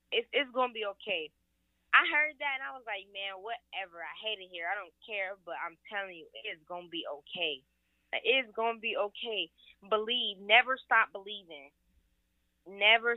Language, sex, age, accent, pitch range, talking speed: English, female, 20-39, American, 165-225 Hz, 180 wpm